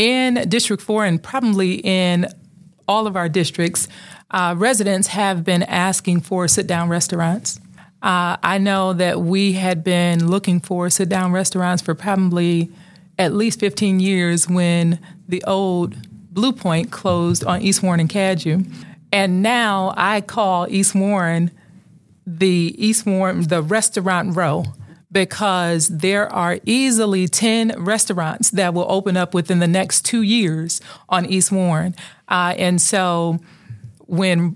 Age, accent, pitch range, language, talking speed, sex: 30-49, American, 175-200 Hz, English, 140 wpm, female